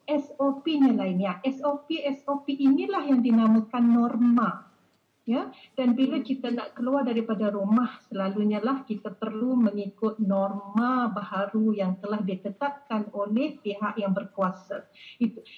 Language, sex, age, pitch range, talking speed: Malay, female, 40-59, 215-275 Hz, 125 wpm